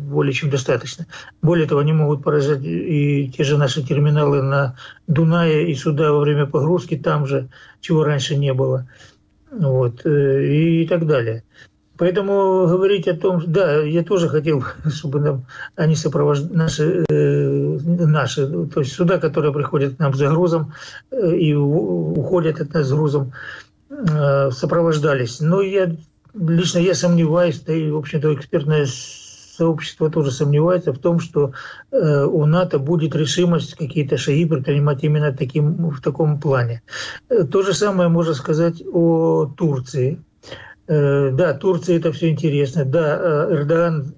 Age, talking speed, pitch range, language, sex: 50-69, 140 wpm, 140-165 Hz, Ukrainian, male